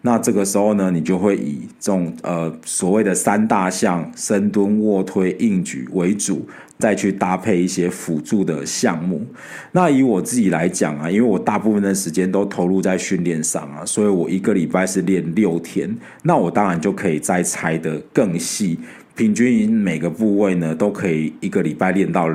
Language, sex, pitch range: Chinese, male, 85-110 Hz